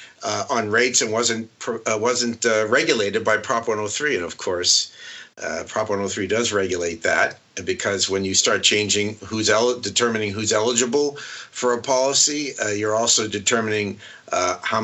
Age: 50-69